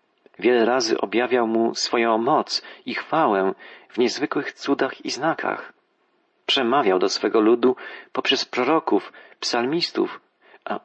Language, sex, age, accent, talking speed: Polish, male, 40-59, native, 115 wpm